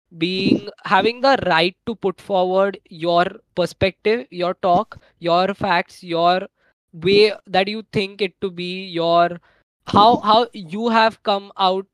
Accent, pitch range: native, 180-215 Hz